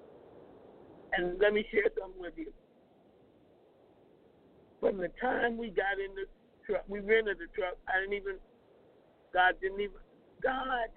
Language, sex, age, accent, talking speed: English, male, 50-69, American, 140 wpm